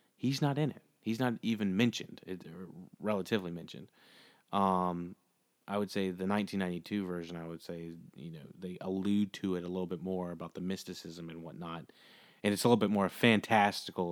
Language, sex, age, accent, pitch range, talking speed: English, male, 30-49, American, 90-110 Hz, 185 wpm